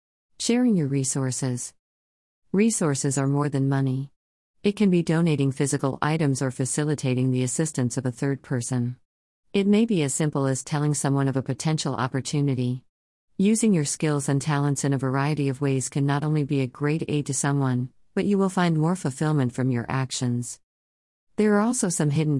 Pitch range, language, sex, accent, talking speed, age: 130-155 Hz, English, female, American, 180 wpm, 50-69